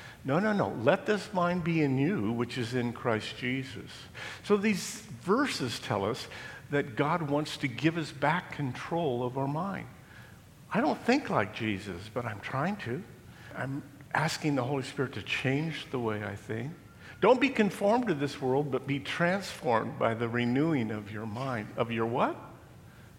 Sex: male